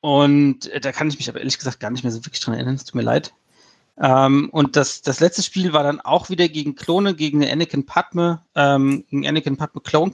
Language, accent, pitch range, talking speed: German, German, 135-170 Hz, 230 wpm